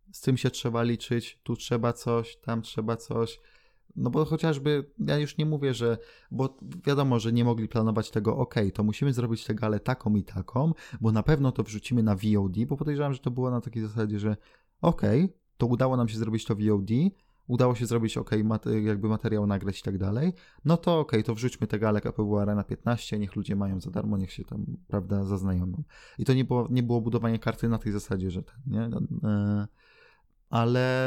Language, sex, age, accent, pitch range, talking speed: Polish, male, 20-39, native, 105-130 Hz, 205 wpm